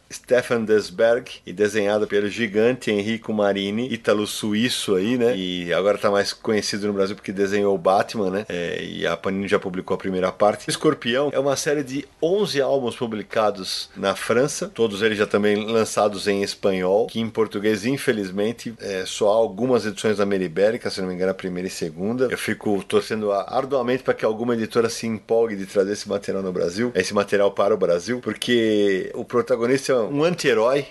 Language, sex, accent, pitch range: Portuguese, male, Brazilian, 100-135 Hz